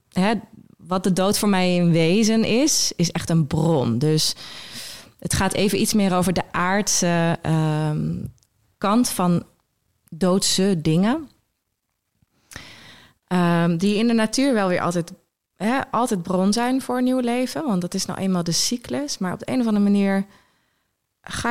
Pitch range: 165-195 Hz